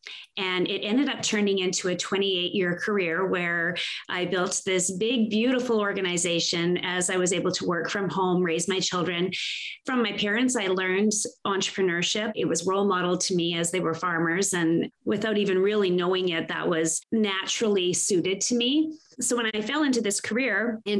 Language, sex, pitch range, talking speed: English, female, 175-210 Hz, 180 wpm